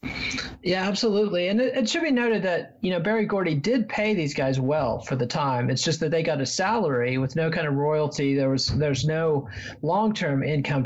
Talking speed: 220 wpm